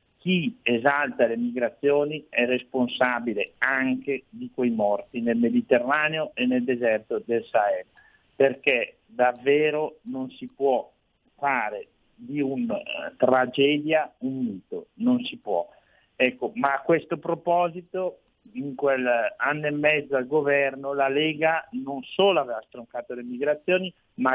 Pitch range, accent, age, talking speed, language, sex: 130-170 Hz, native, 50-69, 130 wpm, Italian, male